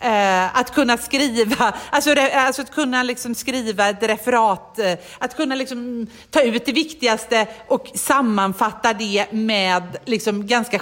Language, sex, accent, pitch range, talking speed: Swedish, female, native, 180-265 Hz, 130 wpm